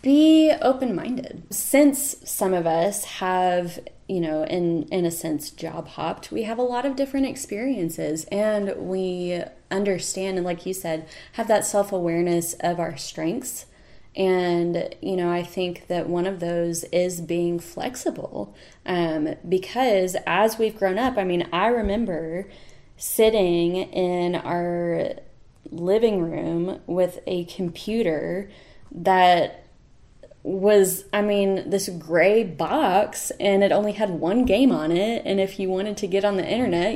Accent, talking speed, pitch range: American, 145 wpm, 175-220 Hz